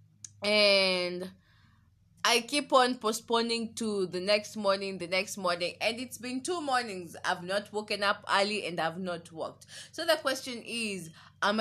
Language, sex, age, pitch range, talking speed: English, female, 20-39, 175-230 Hz, 160 wpm